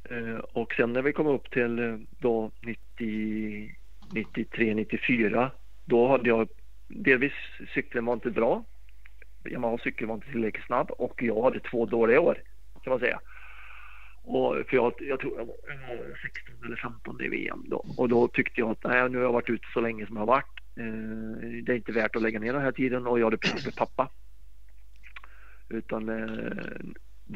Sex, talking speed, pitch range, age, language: male, 185 wpm, 110-120 Hz, 50-69, Swedish